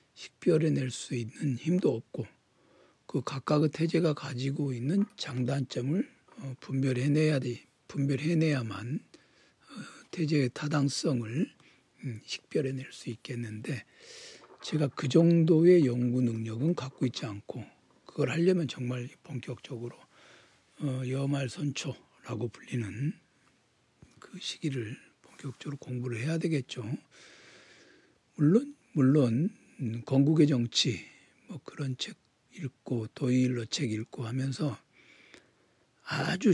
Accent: native